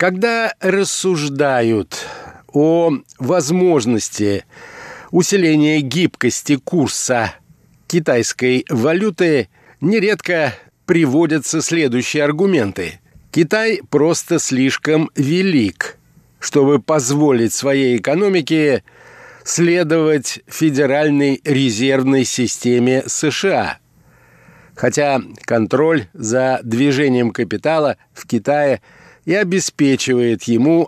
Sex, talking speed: male, 70 wpm